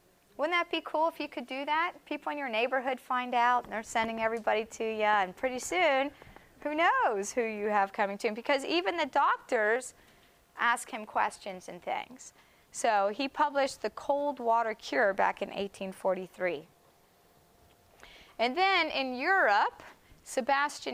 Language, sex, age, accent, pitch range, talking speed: English, female, 30-49, American, 210-290 Hz, 160 wpm